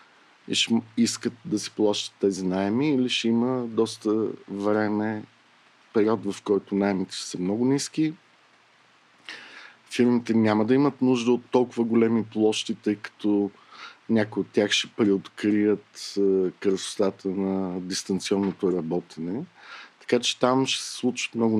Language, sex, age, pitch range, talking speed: Bulgarian, male, 50-69, 100-120 Hz, 130 wpm